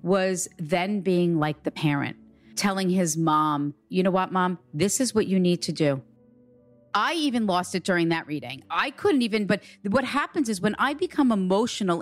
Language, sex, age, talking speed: English, female, 40-59, 190 wpm